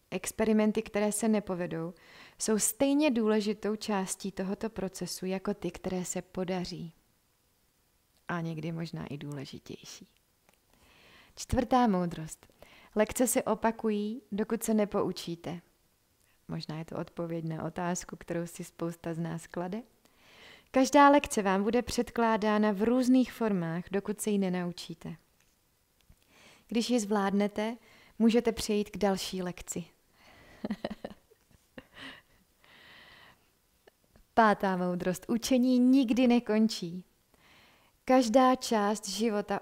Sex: female